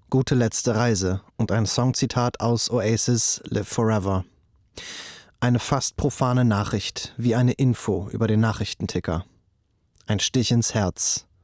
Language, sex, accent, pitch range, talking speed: German, male, German, 110-130 Hz, 125 wpm